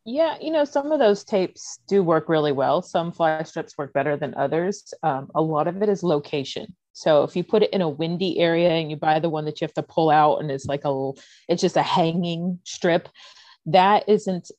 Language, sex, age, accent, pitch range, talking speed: English, female, 30-49, American, 145-180 Hz, 230 wpm